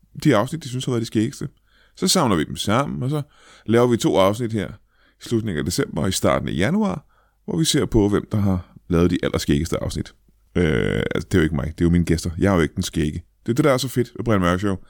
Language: Danish